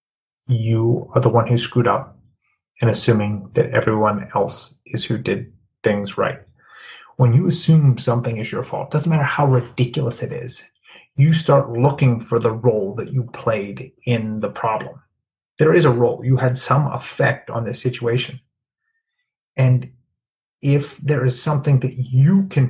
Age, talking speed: 30-49, 160 wpm